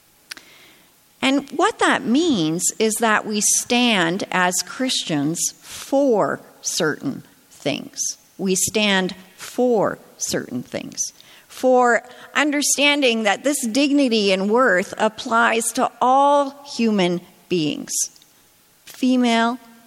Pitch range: 185-250 Hz